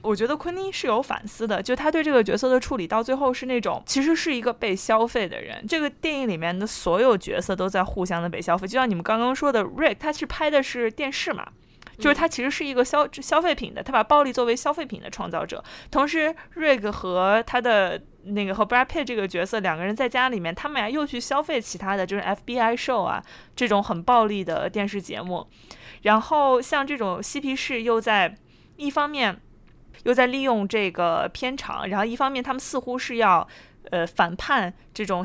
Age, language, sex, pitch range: 20-39, Chinese, female, 200-275 Hz